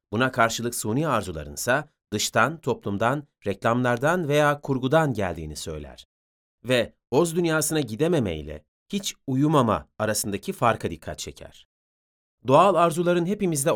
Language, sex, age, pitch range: Turkish, male, 30-49, 100-150 Hz